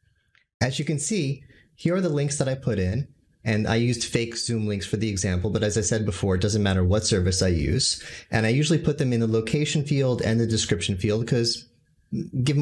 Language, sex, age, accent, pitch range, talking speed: English, male, 30-49, American, 105-155 Hz, 230 wpm